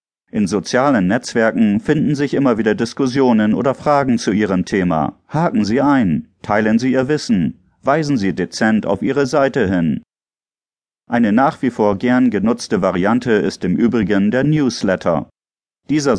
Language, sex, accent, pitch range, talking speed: German, male, German, 105-150 Hz, 150 wpm